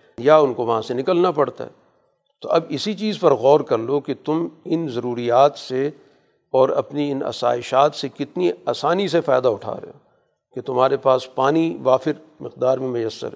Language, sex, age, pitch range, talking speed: Urdu, male, 50-69, 125-145 Hz, 185 wpm